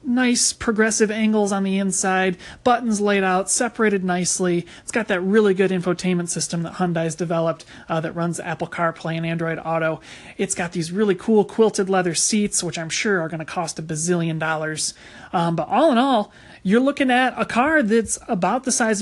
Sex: male